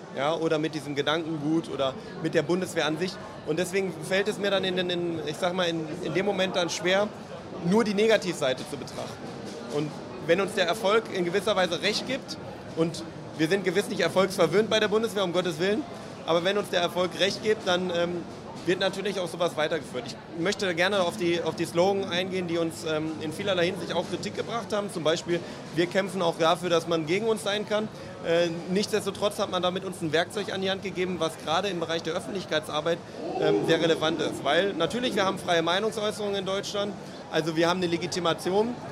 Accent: German